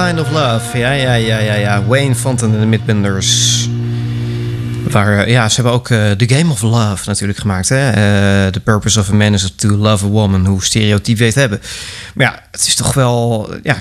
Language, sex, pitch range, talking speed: Dutch, male, 100-130 Hz, 215 wpm